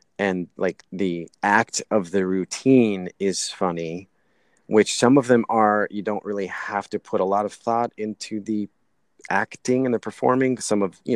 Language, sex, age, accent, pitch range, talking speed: English, male, 30-49, American, 90-110 Hz, 175 wpm